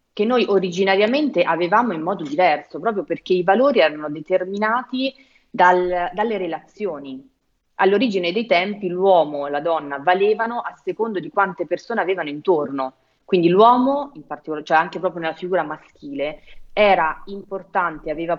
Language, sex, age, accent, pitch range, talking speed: Italian, female, 30-49, native, 155-205 Hz, 145 wpm